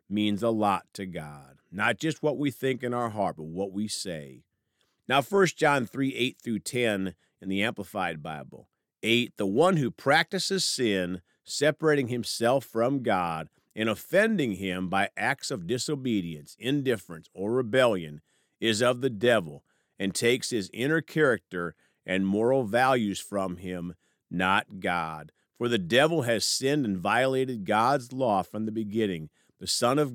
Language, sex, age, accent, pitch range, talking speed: English, male, 50-69, American, 95-140 Hz, 155 wpm